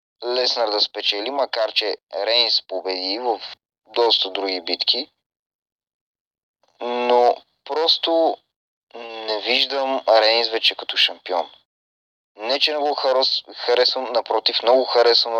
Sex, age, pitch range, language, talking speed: male, 30-49, 110-140 Hz, Bulgarian, 105 wpm